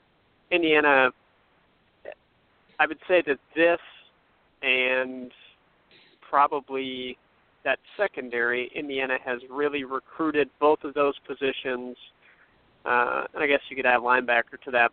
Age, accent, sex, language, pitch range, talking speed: 40-59, American, male, English, 125-145 Hz, 110 wpm